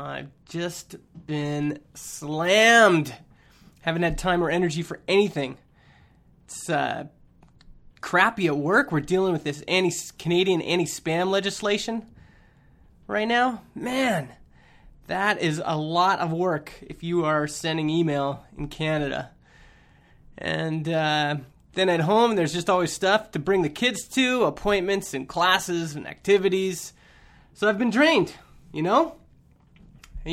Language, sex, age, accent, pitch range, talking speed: English, male, 20-39, American, 160-200 Hz, 130 wpm